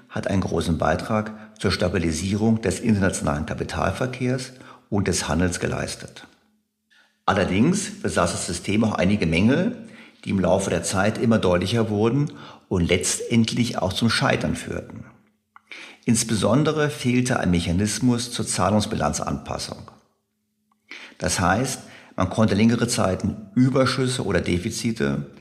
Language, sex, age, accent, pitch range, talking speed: German, male, 50-69, German, 95-120 Hz, 115 wpm